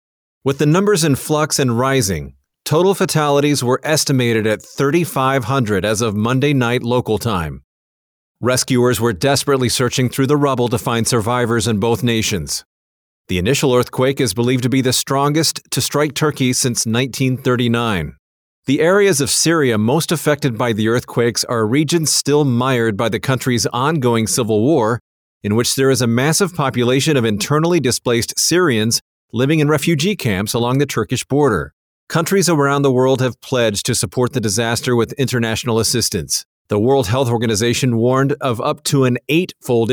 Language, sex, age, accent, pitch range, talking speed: English, male, 40-59, American, 115-140 Hz, 160 wpm